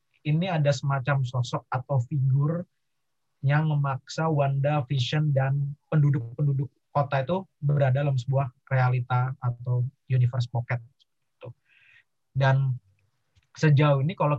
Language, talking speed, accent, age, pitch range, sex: Indonesian, 105 wpm, native, 30-49, 120-145 Hz, male